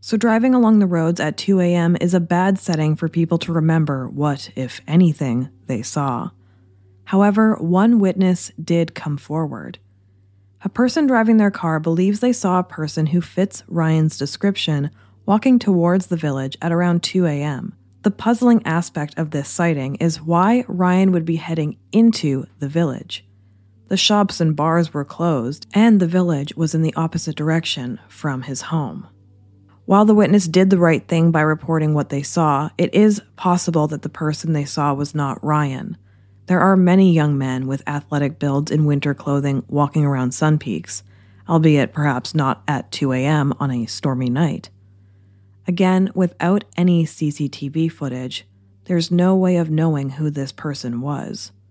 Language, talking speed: English, 165 wpm